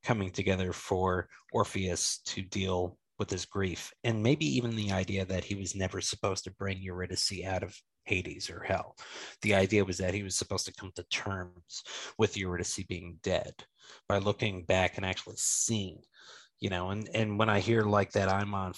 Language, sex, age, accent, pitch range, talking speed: English, male, 30-49, American, 90-105 Hz, 190 wpm